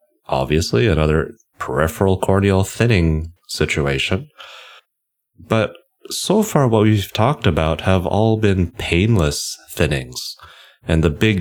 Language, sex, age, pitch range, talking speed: English, male, 30-49, 75-100 Hz, 110 wpm